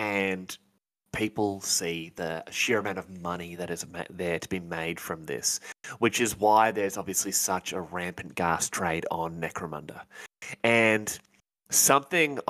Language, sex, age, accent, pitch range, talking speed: English, male, 20-39, Australian, 85-105 Hz, 150 wpm